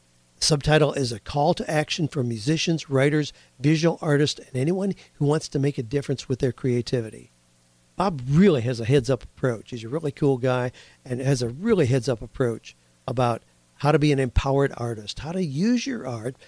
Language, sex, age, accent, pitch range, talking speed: English, male, 50-69, American, 120-155 Hz, 185 wpm